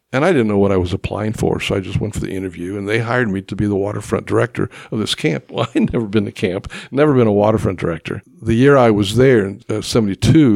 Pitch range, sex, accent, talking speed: 100-120 Hz, male, American, 265 wpm